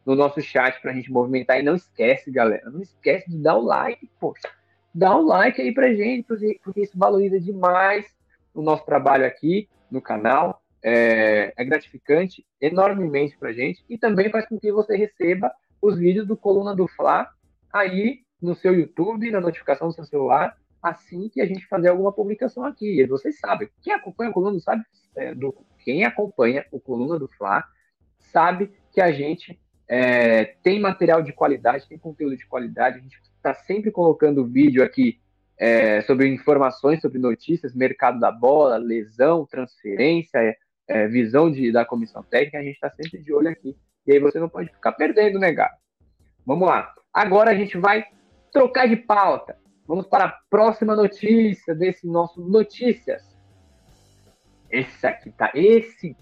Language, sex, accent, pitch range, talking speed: Portuguese, male, Brazilian, 130-200 Hz, 170 wpm